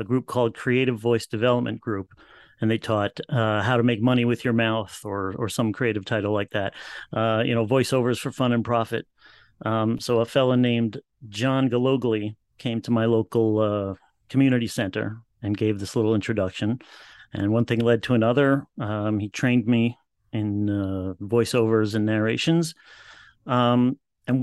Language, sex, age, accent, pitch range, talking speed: English, male, 30-49, American, 110-125 Hz, 170 wpm